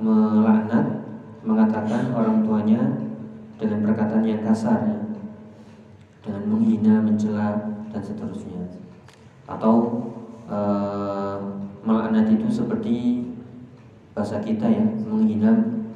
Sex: male